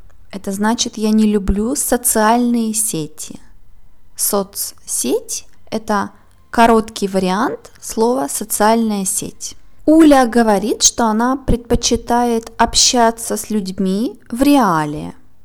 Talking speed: 95 wpm